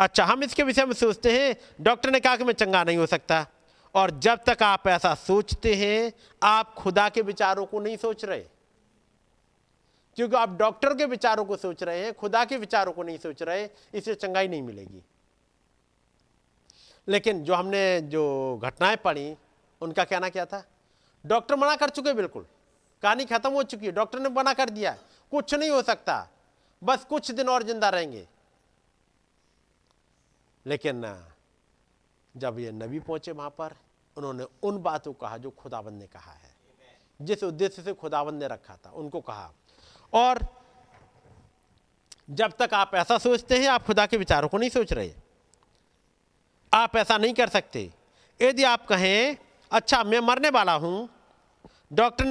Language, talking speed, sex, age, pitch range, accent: Hindi, 160 wpm, male, 50-69, 150-230 Hz, native